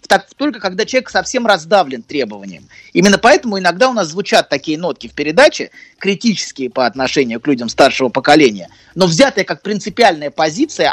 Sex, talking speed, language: male, 155 wpm, Russian